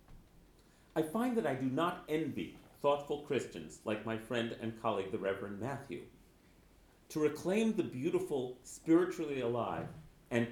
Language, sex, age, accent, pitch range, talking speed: English, male, 40-59, American, 115-155 Hz, 135 wpm